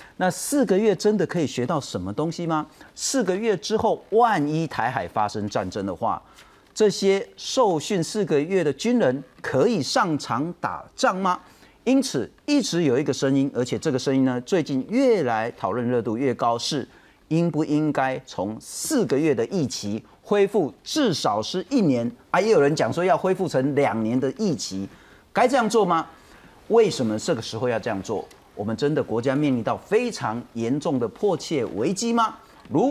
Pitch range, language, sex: 135-220 Hz, Chinese, male